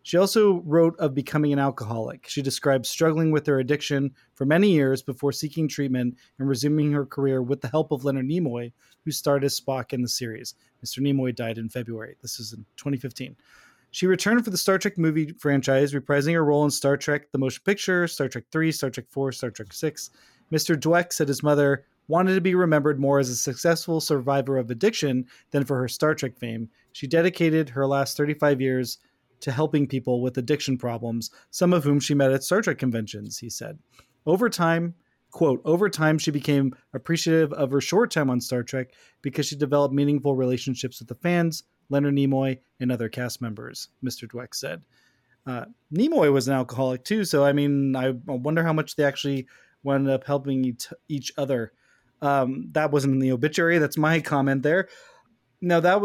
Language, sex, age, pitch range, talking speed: English, male, 20-39, 130-160 Hz, 190 wpm